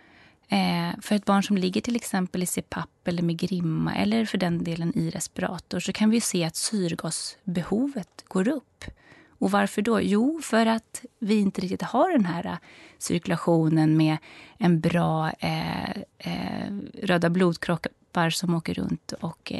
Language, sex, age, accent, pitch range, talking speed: Swedish, female, 30-49, native, 170-225 Hz, 145 wpm